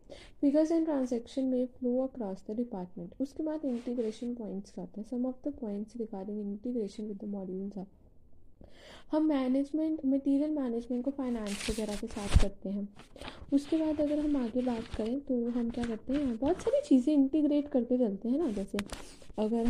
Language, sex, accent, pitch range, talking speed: Hindi, female, native, 210-275 Hz, 175 wpm